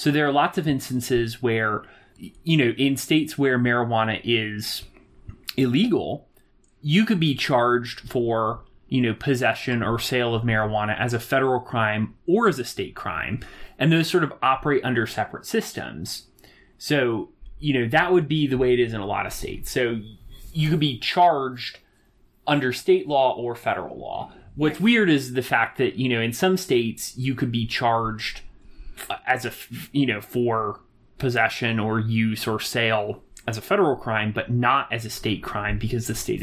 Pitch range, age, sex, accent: 110-140 Hz, 30-49, male, American